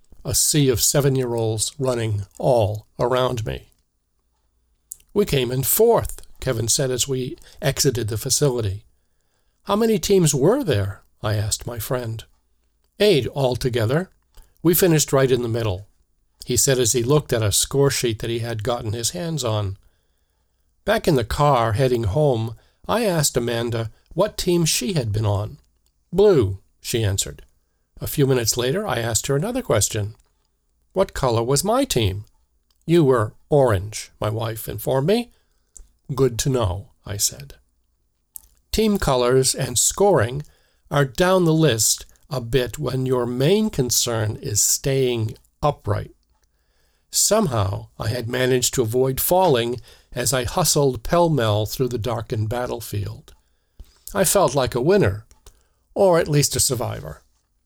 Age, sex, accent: 50-69, male, American